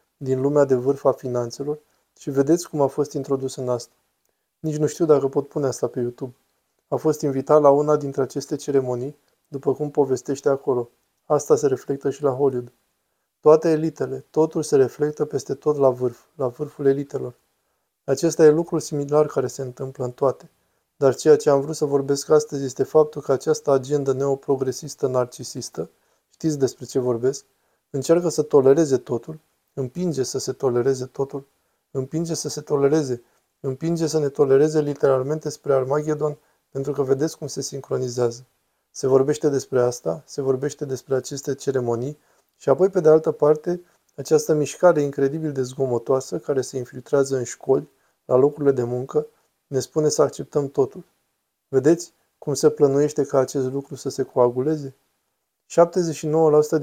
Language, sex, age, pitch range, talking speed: Romanian, male, 20-39, 135-150 Hz, 160 wpm